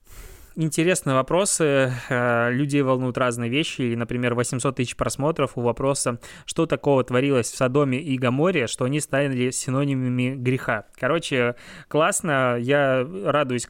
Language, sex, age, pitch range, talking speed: Russian, male, 20-39, 120-140 Hz, 125 wpm